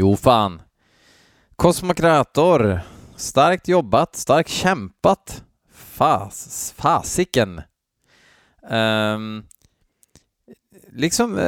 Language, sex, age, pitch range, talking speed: Swedish, male, 20-39, 95-130 Hz, 55 wpm